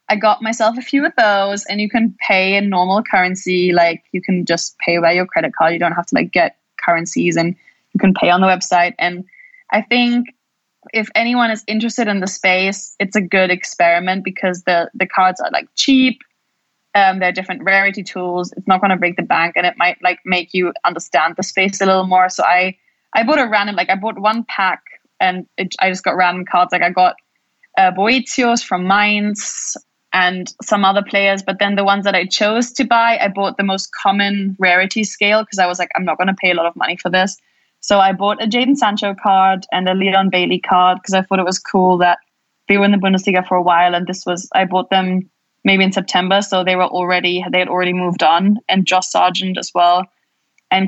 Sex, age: female, 20-39